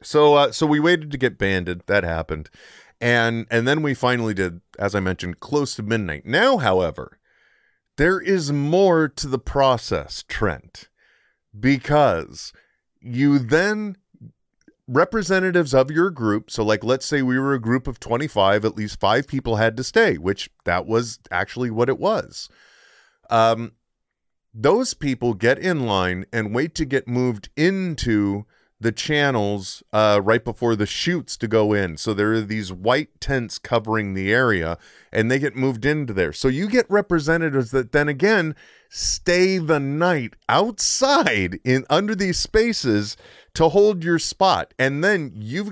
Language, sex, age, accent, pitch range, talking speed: English, male, 30-49, American, 105-155 Hz, 160 wpm